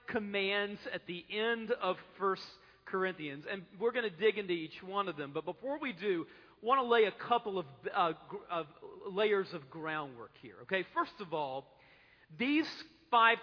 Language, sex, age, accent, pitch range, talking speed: English, male, 40-59, American, 170-225 Hz, 180 wpm